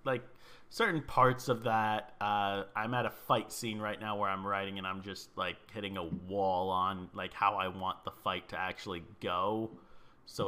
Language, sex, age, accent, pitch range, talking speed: English, male, 30-49, American, 100-120 Hz, 195 wpm